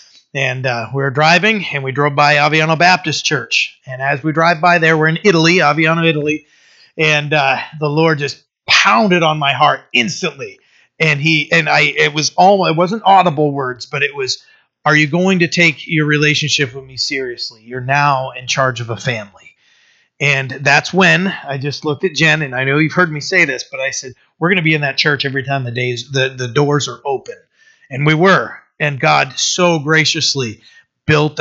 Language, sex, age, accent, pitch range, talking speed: English, male, 30-49, American, 140-170 Hz, 200 wpm